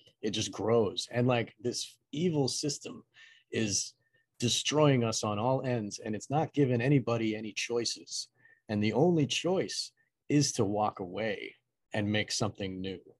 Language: English